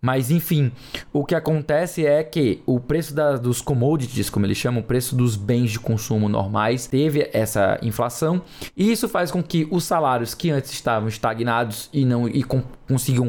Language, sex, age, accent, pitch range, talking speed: Portuguese, male, 20-39, Brazilian, 120-155 Hz, 170 wpm